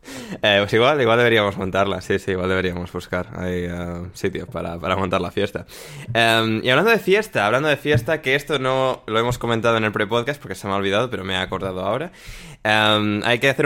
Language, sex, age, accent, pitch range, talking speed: Spanish, male, 20-39, Spanish, 105-135 Hz, 220 wpm